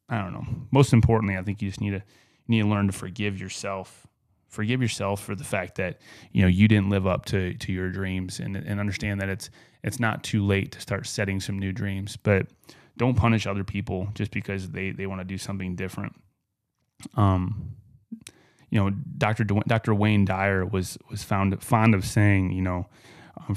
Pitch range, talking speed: 95-110 Hz, 205 wpm